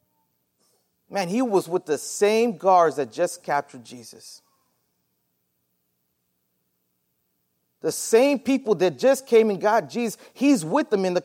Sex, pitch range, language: male, 110-175 Hz, English